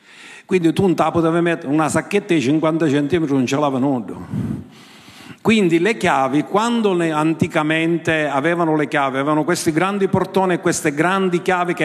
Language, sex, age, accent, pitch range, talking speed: Italian, male, 50-69, native, 155-215 Hz, 165 wpm